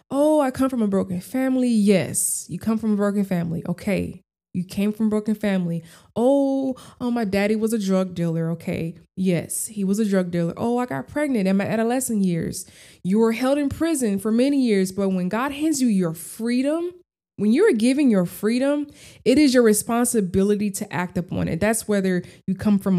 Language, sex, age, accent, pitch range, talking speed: English, female, 20-39, American, 185-255 Hz, 200 wpm